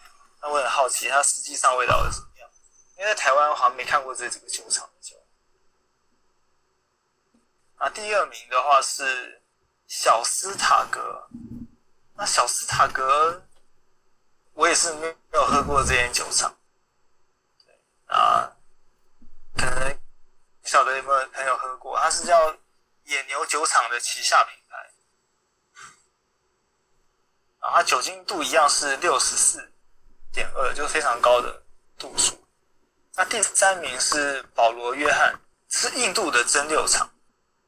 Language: Chinese